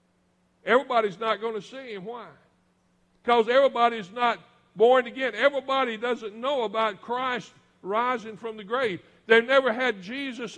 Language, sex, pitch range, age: English, male, 220-270 Hz, 60-79